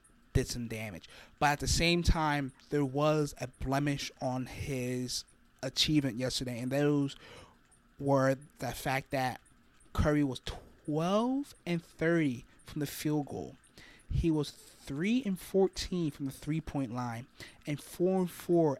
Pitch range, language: 130-155 Hz, English